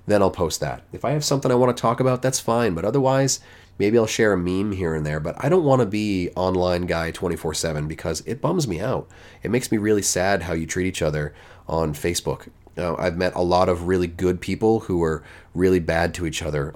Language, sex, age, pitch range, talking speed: English, male, 30-49, 85-110 Hz, 235 wpm